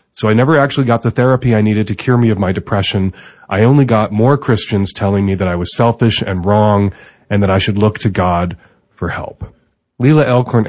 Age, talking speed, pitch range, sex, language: 30-49, 220 wpm, 100-120 Hz, male, English